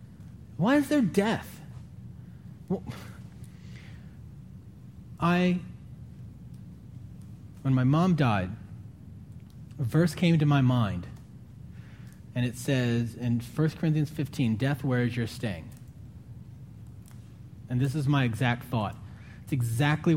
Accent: American